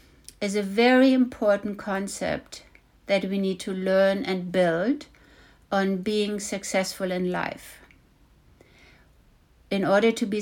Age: 60-79